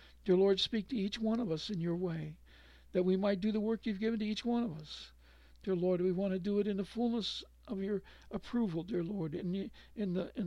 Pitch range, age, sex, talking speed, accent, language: 170-215 Hz, 60-79, male, 250 wpm, American, English